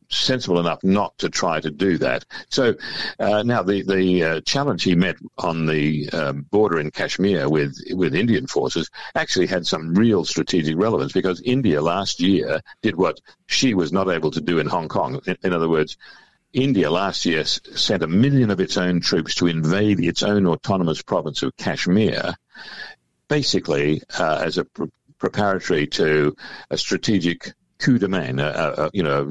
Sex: male